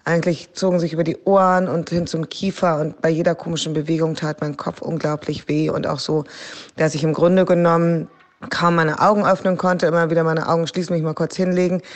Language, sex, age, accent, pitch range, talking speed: German, female, 20-39, German, 165-180 Hz, 210 wpm